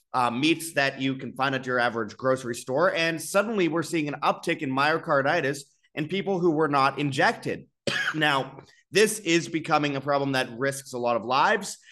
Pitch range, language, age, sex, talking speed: 130-165 Hz, English, 30-49, male, 185 wpm